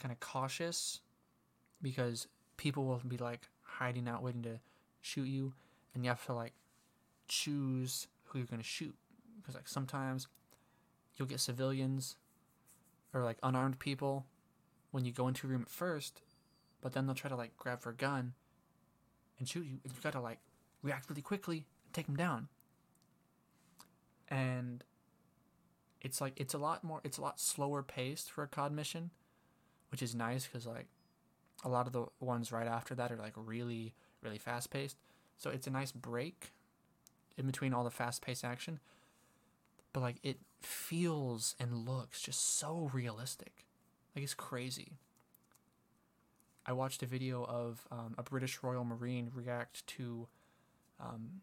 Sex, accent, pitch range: male, American, 120-140 Hz